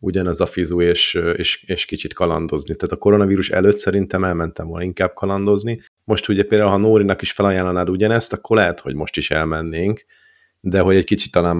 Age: 30-49